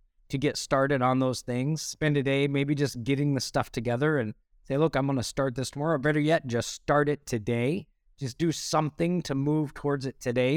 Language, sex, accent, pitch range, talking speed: English, male, American, 125-155 Hz, 215 wpm